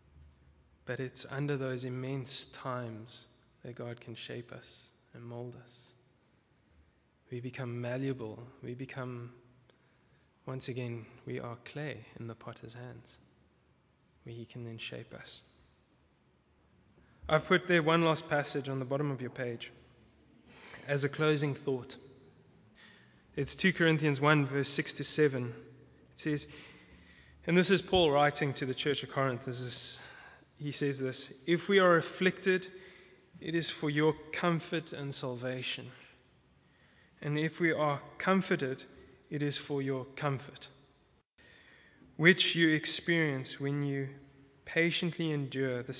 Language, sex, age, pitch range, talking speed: English, male, 20-39, 120-150 Hz, 135 wpm